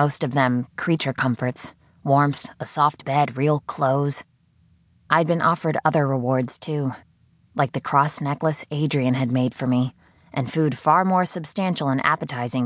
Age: 20-39